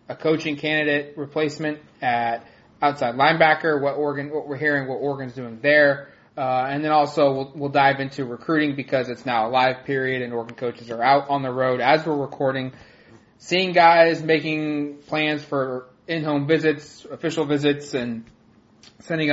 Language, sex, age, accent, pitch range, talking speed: English, male, 20-39, American, 125-155 Hz, 165 wpm